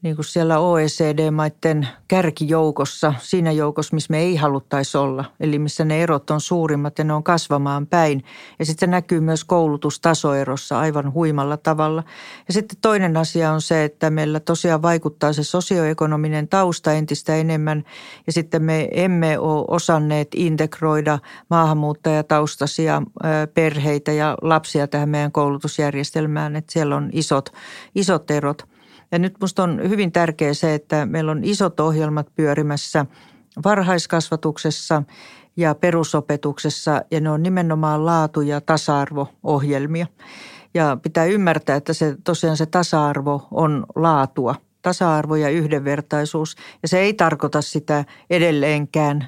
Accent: native